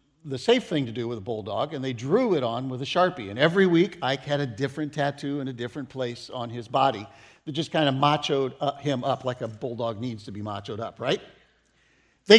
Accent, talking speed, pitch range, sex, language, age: American, 230 wpm, 130-175 Hz, male, English, 50-69